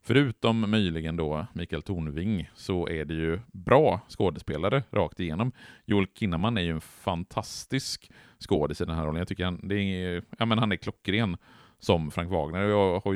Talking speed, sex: 180 wpm, male